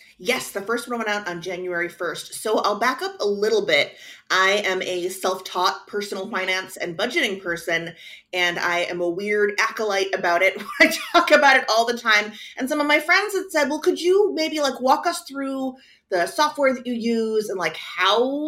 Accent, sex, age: American, female, 30-49